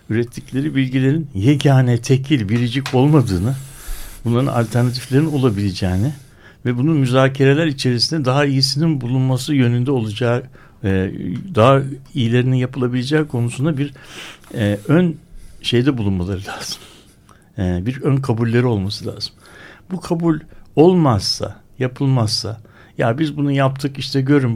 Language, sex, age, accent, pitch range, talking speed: Turkish, male, 60-79, native, 115-145 Hz, 105 wpm